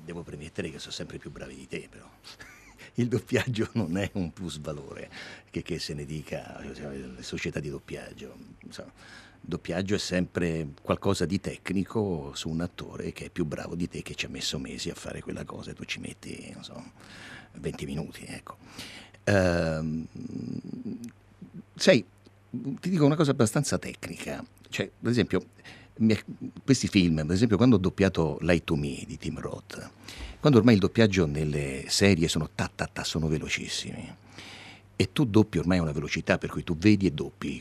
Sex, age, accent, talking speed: male, 50-69, native, 175 wpm